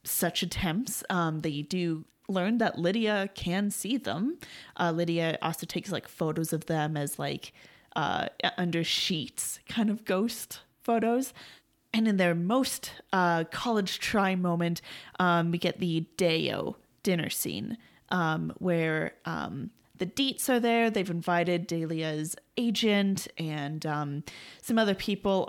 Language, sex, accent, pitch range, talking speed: English, female, American, 170-230 Hz, 140 wpm